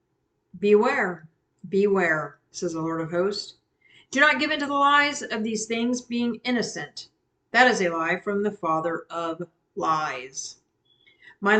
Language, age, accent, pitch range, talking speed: English, 50-69, American, 180-245 Hz, 145 wpm